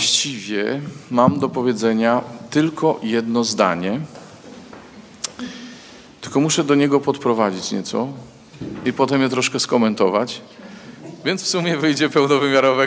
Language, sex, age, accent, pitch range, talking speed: Polish, male, 40-59, native, 110-135 Hz, 105 wpm